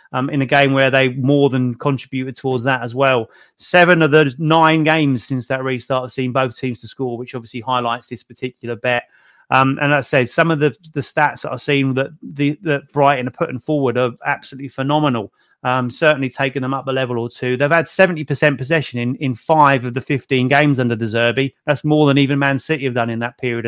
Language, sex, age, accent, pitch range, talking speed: English, male, 30-49, British, 130-150 Hz, 230 wpm